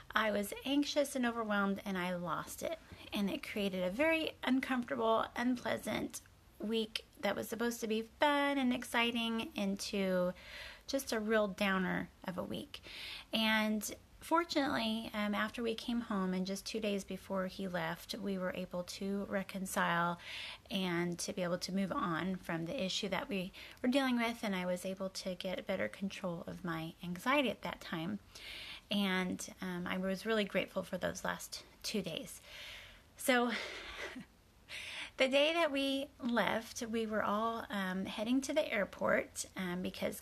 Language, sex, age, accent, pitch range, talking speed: English, female, 30-49, American, 195-245 Hz, 160 wpm